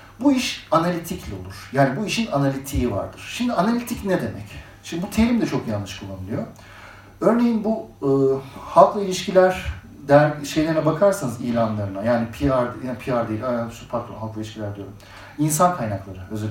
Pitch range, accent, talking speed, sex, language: 105-165 Hz, native, 150 wpm, male, Turkish